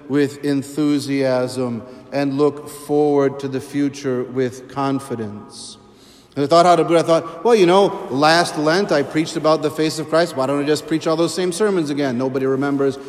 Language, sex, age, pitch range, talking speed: English, male, 40-59, 140-165 Hz, 170 wpm